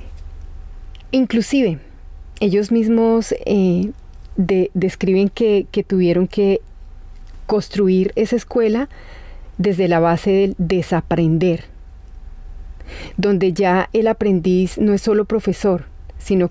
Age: 30-49